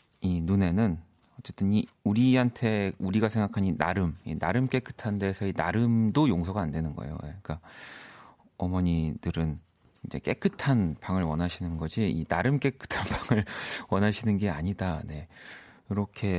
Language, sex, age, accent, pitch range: Korean, male, 40-59, native, 90-130 Hz